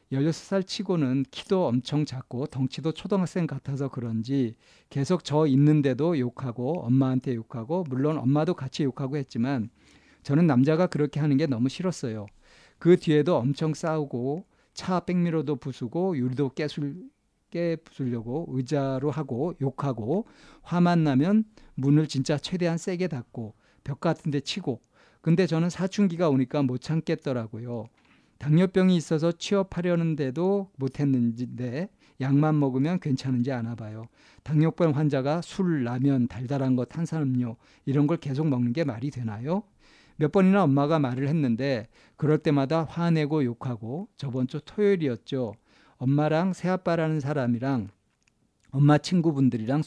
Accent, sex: native, male